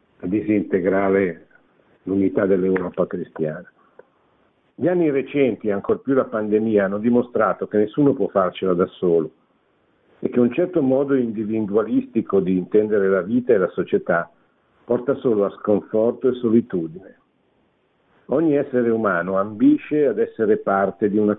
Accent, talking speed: native, 135 wpm